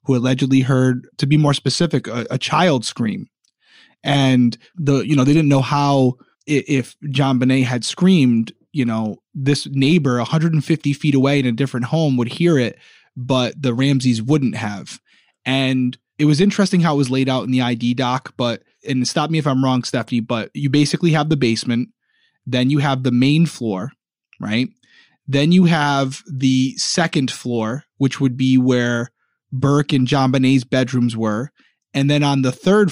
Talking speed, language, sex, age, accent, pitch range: 180 wpm, English, male, 20-39, American, 125-145 Hz